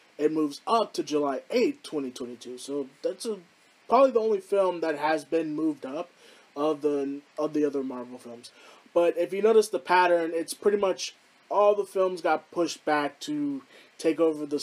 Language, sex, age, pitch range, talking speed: English, male, 20-39, 140-170 Hz, 195 wpm